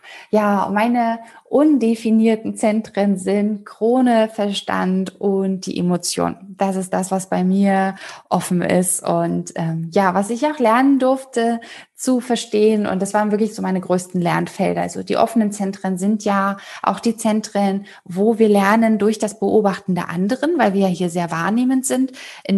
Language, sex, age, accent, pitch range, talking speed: German, female, 10-29, German, 190-225 Hz, 160 wpm